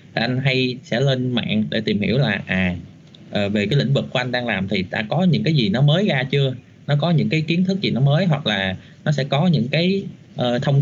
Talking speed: 260 wpm